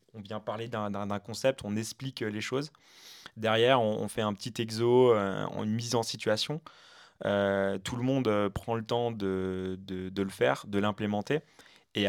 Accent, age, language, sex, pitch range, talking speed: French, 20-39, French, male, 100-115 Hz, 180 wpm